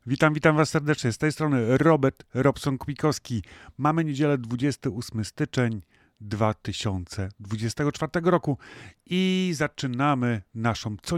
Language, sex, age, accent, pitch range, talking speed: Polish, male, 30-49, native, 110-140 Hz, 100 wpm